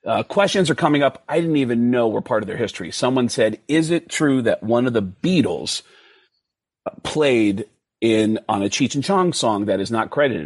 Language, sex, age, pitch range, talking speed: English, male, 40-59, 110-150 Hz, 205 wpm